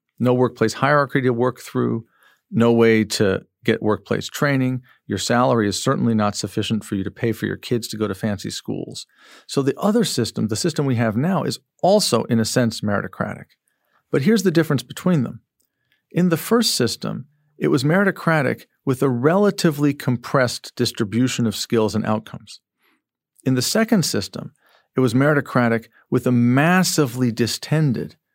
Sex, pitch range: male, 115-150 Hz